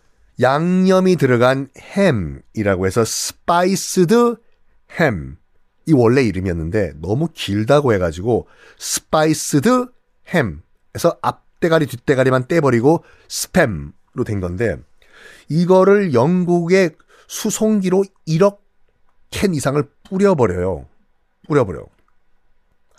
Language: Korean